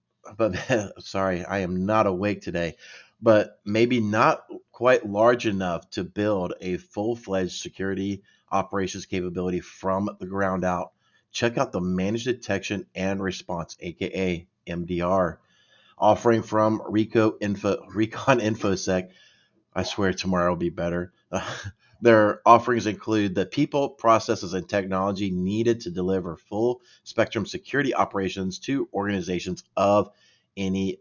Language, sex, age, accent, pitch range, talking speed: English, male, 30-49, American, 95-110 Hz, 120 wpm